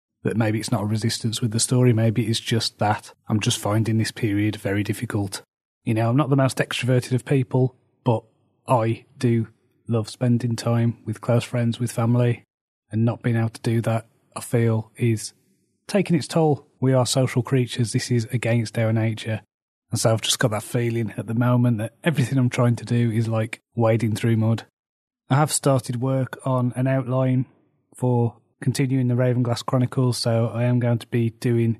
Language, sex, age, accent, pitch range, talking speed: English, male, 30-49, British, 110-125 Hz, 195 wpm